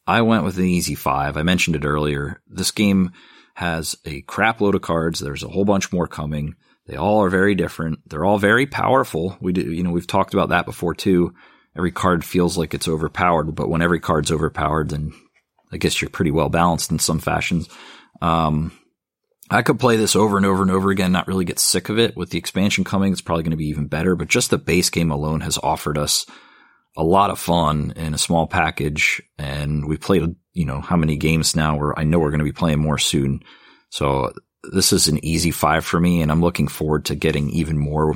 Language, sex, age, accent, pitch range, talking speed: English, male, 30-49, American, 75-95 Hz, 220 wpm